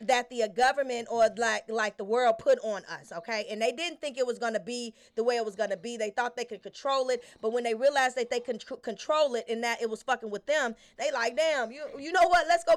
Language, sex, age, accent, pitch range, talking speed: English, female, 20-39, American, 235-310 Hz, 280 wpm